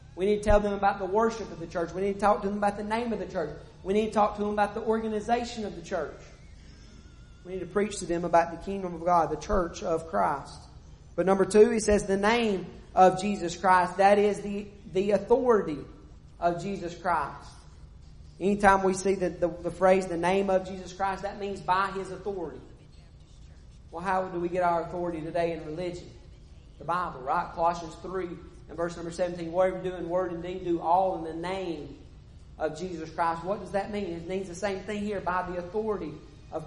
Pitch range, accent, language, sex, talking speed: 170-200 Hz, American, English, male, 220 wpm